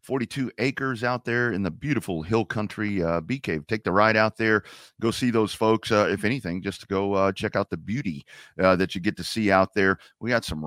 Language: English